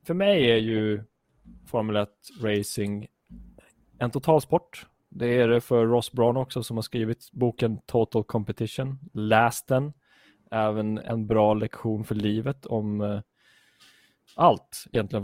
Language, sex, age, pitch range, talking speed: Swedish, male, 20-39, 110-130 Hz, 135 wpm